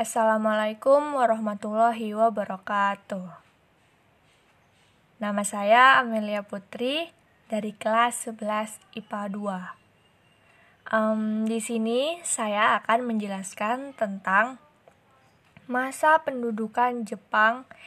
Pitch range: 210-240 Hz